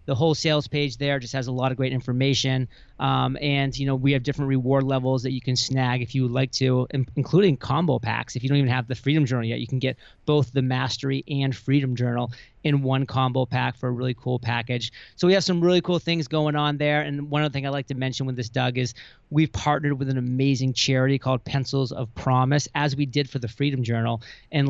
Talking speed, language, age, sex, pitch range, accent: 245 wpm, English, 30-49, male, 125-140 Hz, American